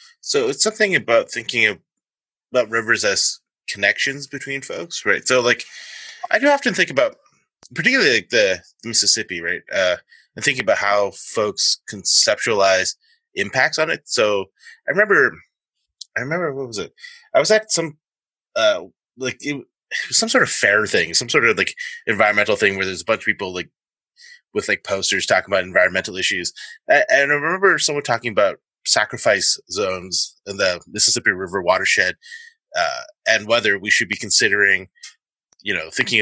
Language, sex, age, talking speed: English, male, 20-39, 170 wpm